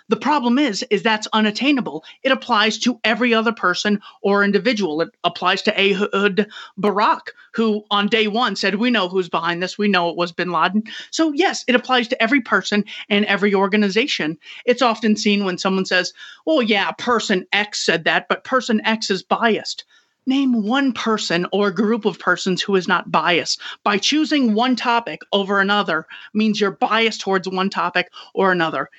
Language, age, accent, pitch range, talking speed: English, 30-49, American, 190-235 Hz, 180 wpm